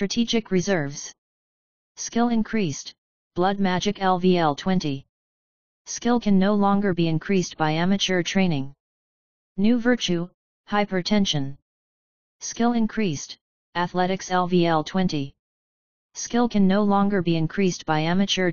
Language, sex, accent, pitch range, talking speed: English, female, American, 160-195 Hz, 105 wpm